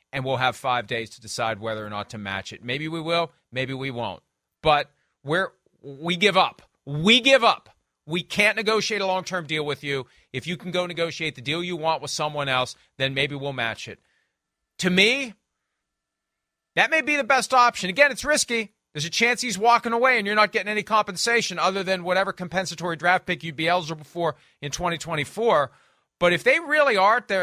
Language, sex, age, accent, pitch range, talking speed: English, male, 30-49, American, 150-220 Hz, 200 wpm